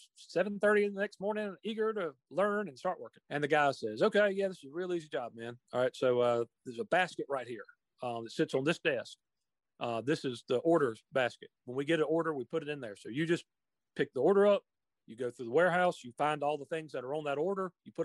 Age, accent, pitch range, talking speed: 40-59, American, 135-195 Hz, 270 wpm